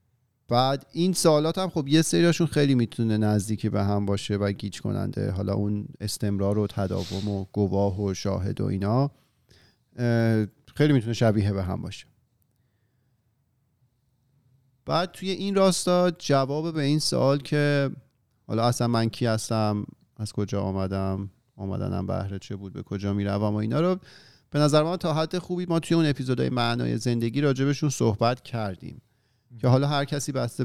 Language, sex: Persian, male